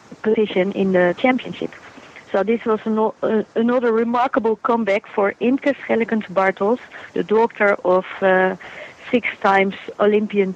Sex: female